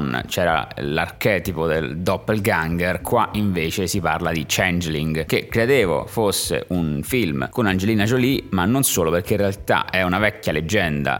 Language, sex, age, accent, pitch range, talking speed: Italian, male, 30-49, native, 85-105 Hz, 150 wpm